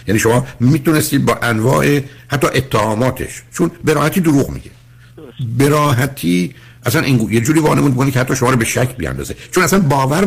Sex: male